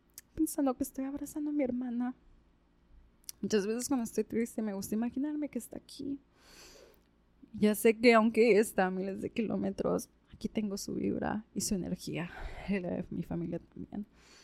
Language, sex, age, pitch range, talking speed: Spanish, female, 20-39, 175-220 Hz, 165 wpm